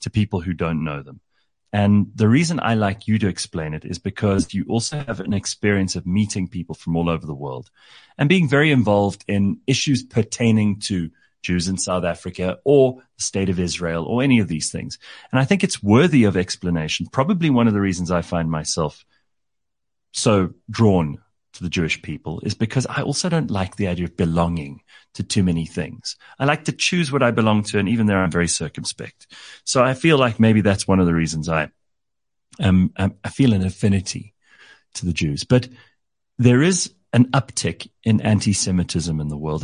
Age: 30-49